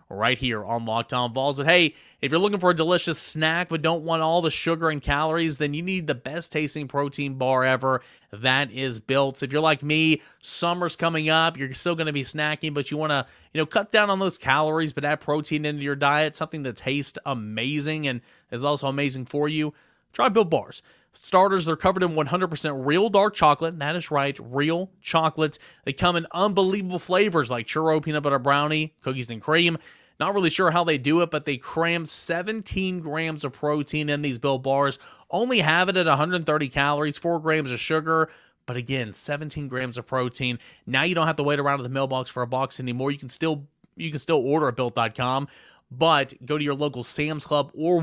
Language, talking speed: English, 210 wpm